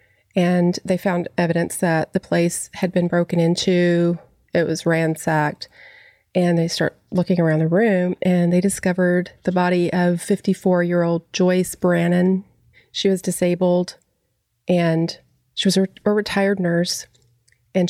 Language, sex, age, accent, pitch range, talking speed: English, female, 30-49, American, 175-210 Hz, 150 wpm